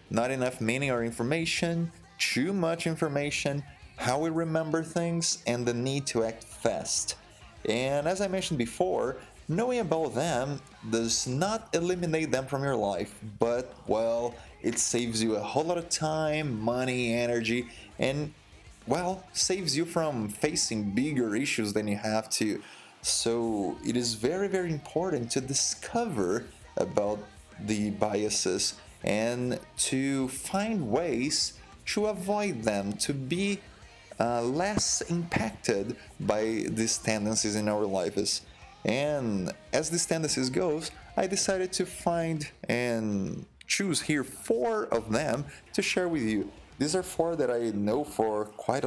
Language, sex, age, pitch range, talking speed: English, male, 30-49, 110-160 Hz, 140 wpm